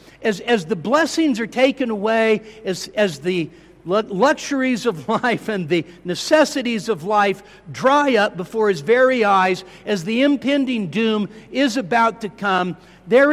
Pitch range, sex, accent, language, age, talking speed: 205-265 Hz, male, American, English, 60-79, 150 wpm